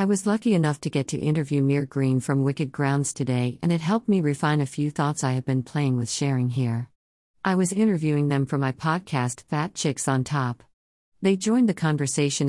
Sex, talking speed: female, 210 wpm